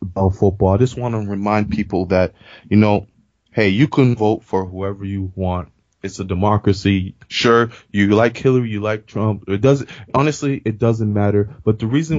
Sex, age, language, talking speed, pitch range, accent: male, 20-39, English, 185 wpm, 100-125 Hz, American